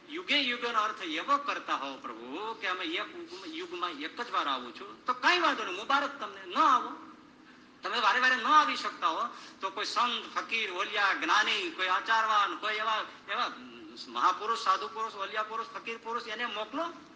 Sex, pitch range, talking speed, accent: male, 255-315 Hz, 45 wpm, native